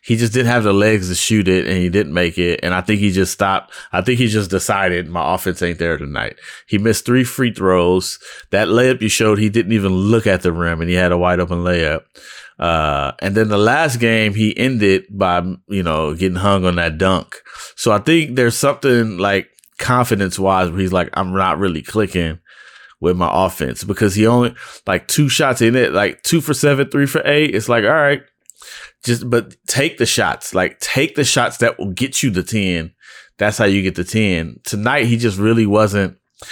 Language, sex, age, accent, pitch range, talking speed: English, male, 30-49, American, 90-115 Hz, 215 wpm